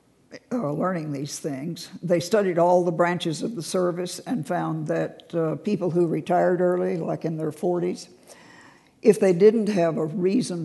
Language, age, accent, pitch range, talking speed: English, 60-79, American, 160-190 Hz, 170 wpm